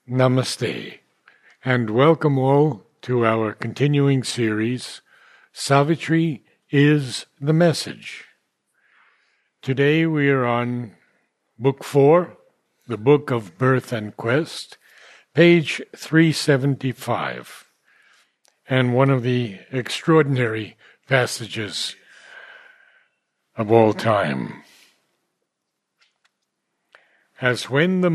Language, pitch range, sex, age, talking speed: English, 125-160 Hz, male, 60-79, 80 wpm